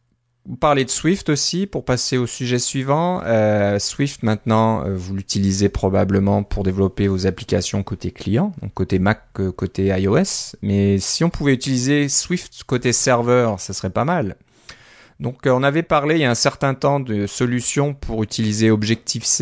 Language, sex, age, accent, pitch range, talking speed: French, male, 30-49, French, 100-125 Hz, 165 wpm